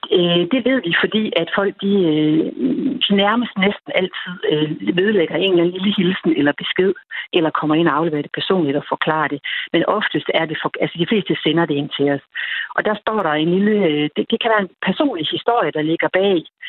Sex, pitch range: female, 155-210 Hz